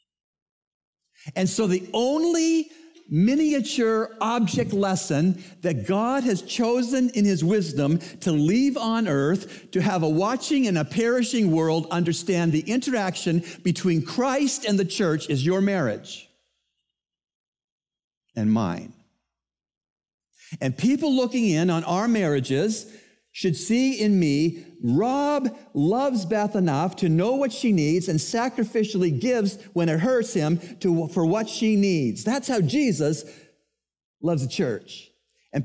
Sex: male